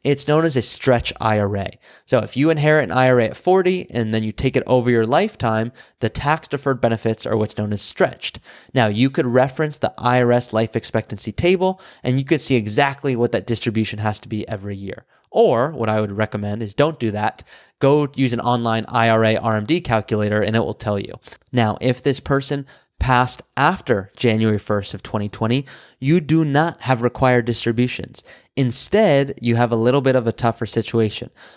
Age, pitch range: 20-39, 110-140 Hz